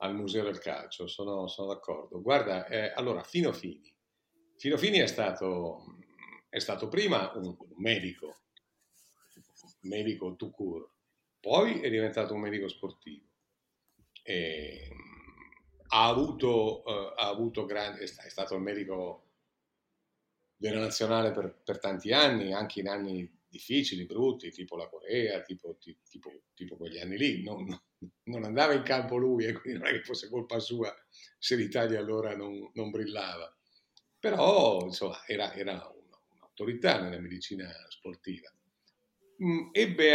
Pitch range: 95-115 Hz